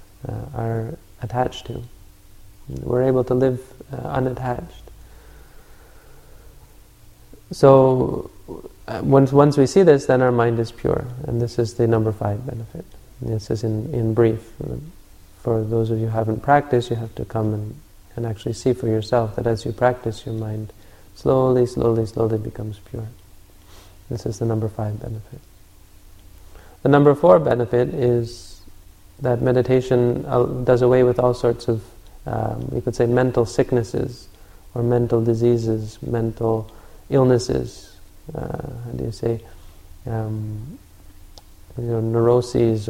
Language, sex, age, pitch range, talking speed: English, male, 30-49, 105-125 Hz, 140 wpm